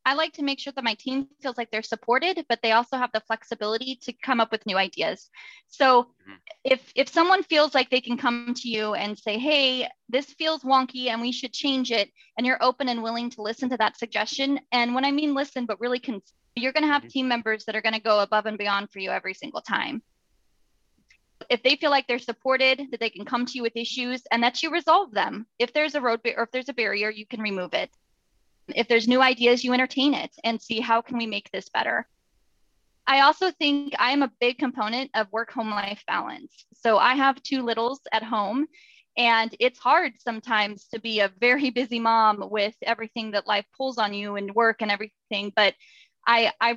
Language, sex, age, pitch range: English, female, 20-39, 220-265 Hz